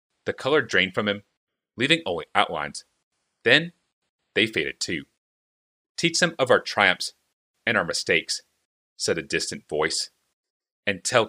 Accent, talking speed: American, 140 wpm